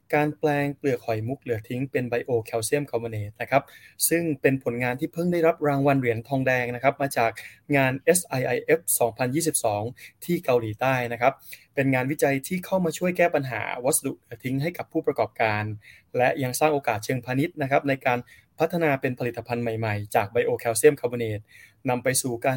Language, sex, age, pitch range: Thai, male, 20-39, 120-150 Hz